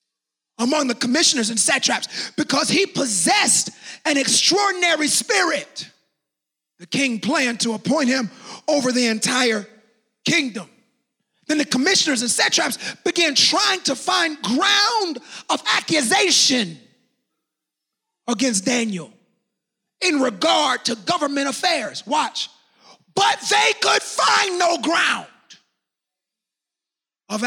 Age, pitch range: 30-49, 215-310 Hz